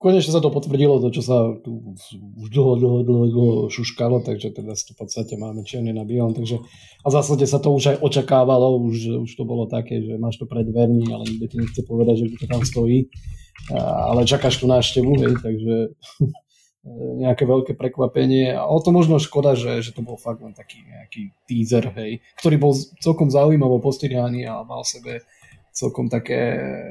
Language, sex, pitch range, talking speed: Slovak, male, 115-130 Hz, 185 wpm